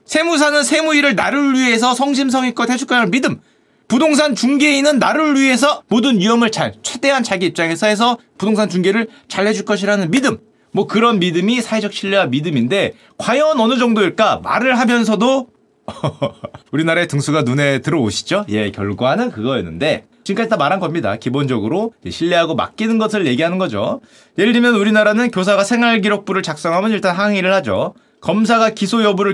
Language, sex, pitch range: Korean, male, 180-245 Hz